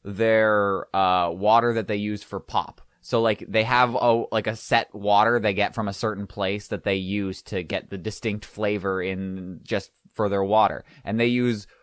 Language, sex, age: English, male, 20-39